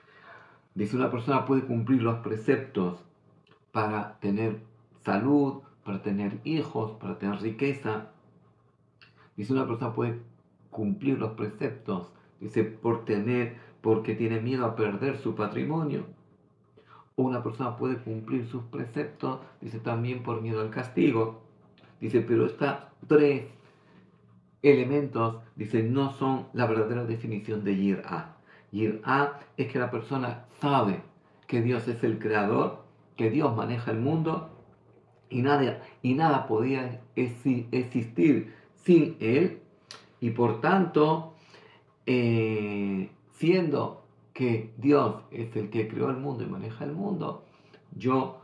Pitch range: 110-135 Hz